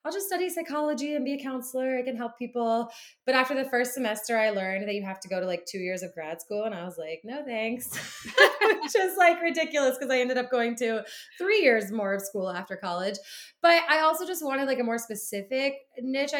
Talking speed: 235 wpm